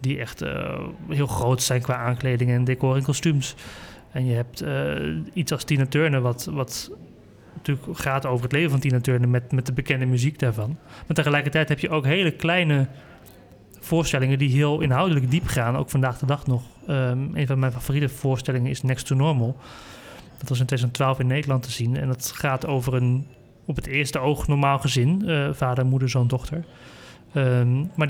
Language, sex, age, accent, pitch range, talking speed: Dutch, male, 30-49, Dutch, 125-150 Hz, 190 wpm